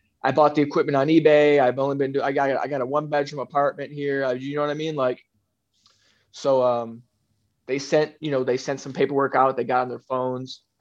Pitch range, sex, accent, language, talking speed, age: 125-145 Hz, male, American, English, 240 wpm, 20-39